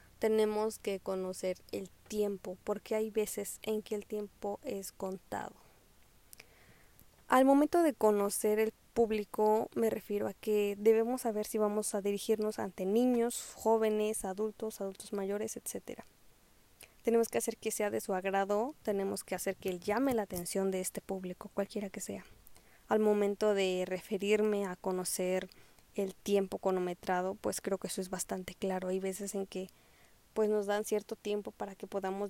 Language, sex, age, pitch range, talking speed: Spanish, female, 20-39, 195-220 Hz, 160 wpm